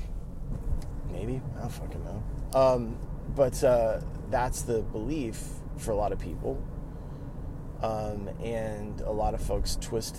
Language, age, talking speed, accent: English, 30-49, 135 wpm, American